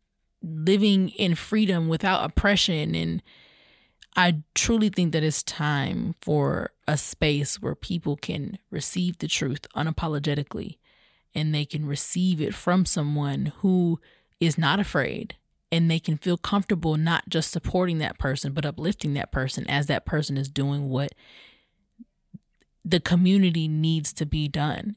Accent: American